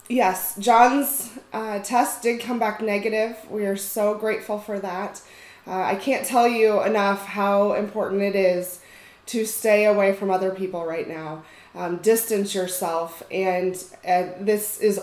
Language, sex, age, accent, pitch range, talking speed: English, female, 20-39, American, 185-210 Hz, 155 wpm